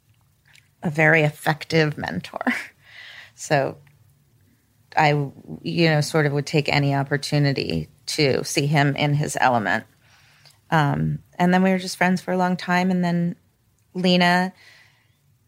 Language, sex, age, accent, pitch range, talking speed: English, female, 30-49, American, 135-160 Hz, 130 wpm